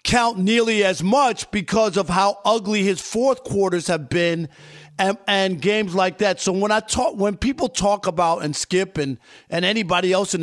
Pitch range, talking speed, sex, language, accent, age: 185-240 Hz, 190 wpm, male, English, American, 50-69